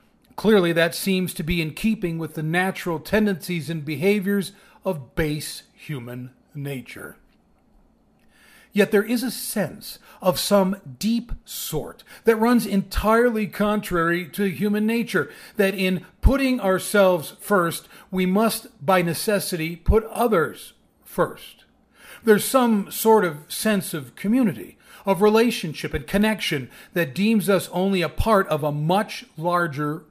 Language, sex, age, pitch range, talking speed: English, male, 40-59, 165-210 Hz, 130 wpm